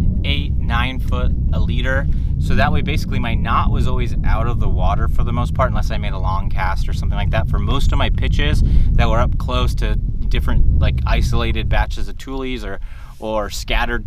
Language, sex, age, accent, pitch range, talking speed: English, male, 30-49, American, 95-115 Hz, 215 wpm